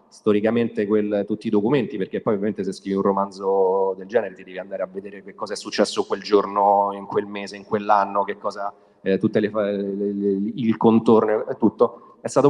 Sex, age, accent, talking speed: male, 30-49, native, 180 wpm